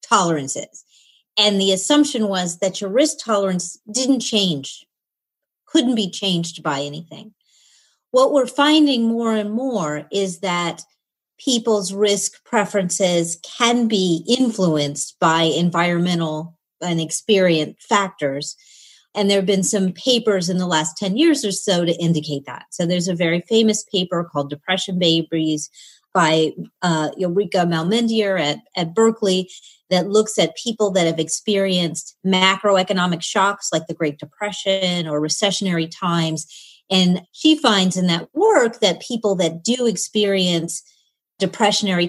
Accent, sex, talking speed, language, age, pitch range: American, female, 135 wpm, German, 40-59, 165-210 Hz